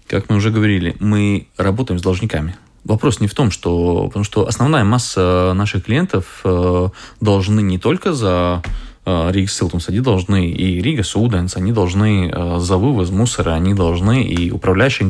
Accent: native